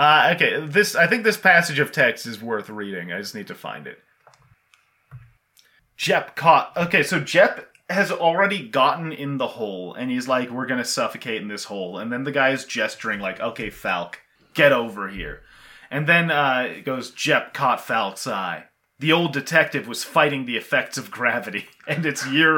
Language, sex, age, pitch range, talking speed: English, male, 30-49, 140-170 Hz, 190 wpm